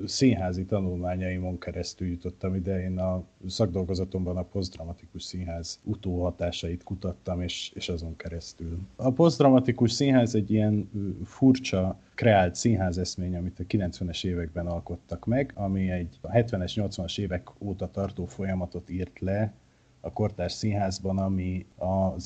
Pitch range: 90-100 Hz